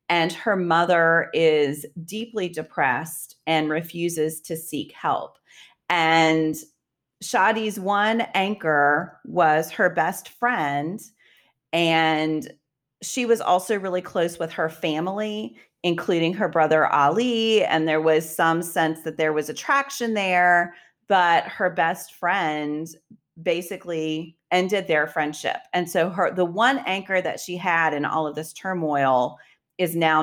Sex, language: female, English